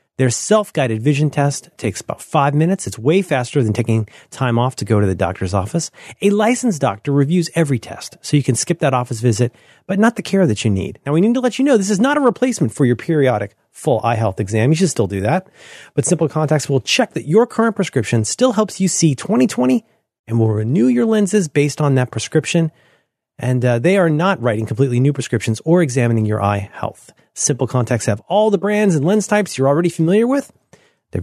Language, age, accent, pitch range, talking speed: English, 30-49, American, 120-190 Hz, 225 wpm